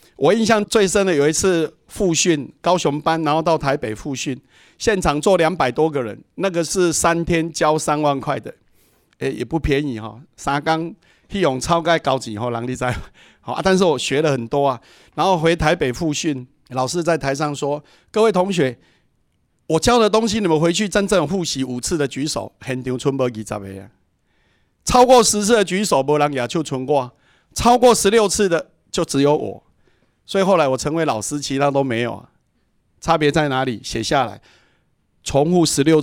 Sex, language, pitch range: male, Chinese, 130-170 Hz